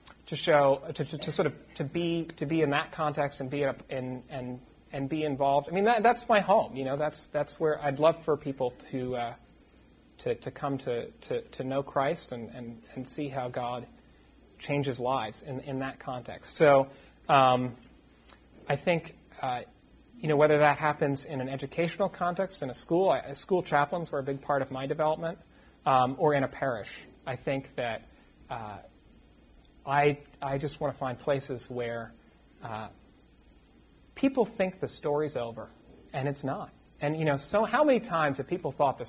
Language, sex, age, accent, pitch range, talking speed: English, male, 30-49, American, 125-155 Hz, 190 wpm